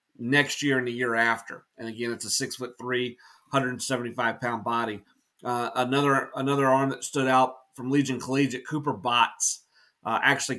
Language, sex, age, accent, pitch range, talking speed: English, male, 30-49, American, 125-135 Hz, 170 wpm